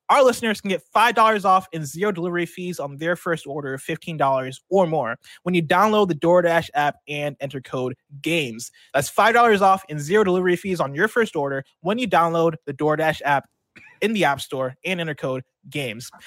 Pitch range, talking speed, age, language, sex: 140-185 Hz, 195 wpm, 20-39, English, male